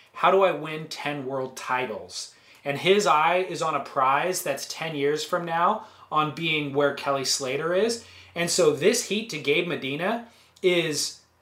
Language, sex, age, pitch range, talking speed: English, male, 30-49, 140-185 Hz, 175 wpm